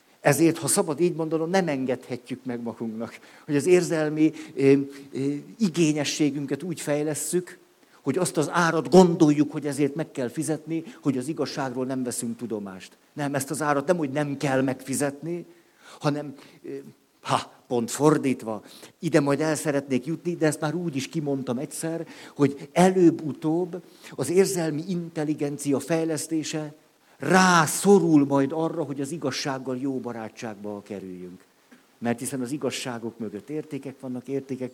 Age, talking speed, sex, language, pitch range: 50-69, 140 wpm, male, Hungarian, 130-160 Hz